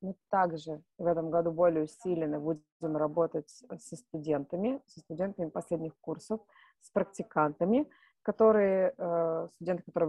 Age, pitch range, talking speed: 20-39, 160-185 Hz, 125 wpm